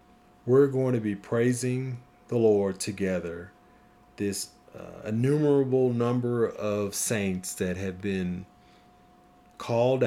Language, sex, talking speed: English, male, 105 wpm